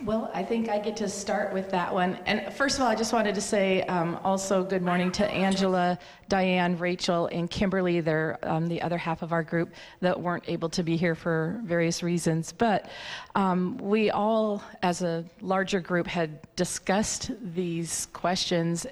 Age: 40-59